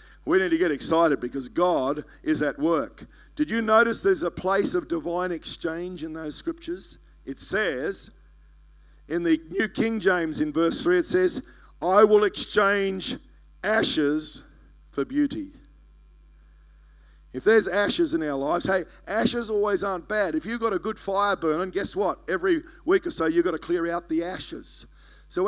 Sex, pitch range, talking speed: male, 155-240 Hz, 170 wpm